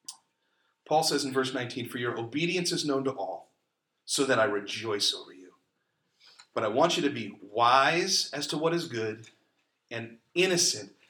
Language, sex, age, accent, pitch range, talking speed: English, male, 40-59, American, 130-180 Hz, 175 wpm